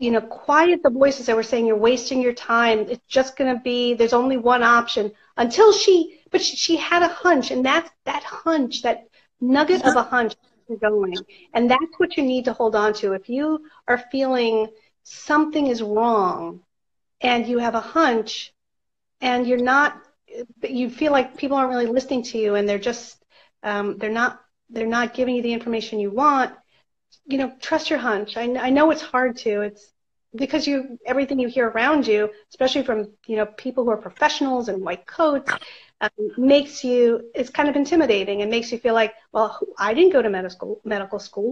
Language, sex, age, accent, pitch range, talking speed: English, female, 40-59, American, 225-275 Hz, 195 wpm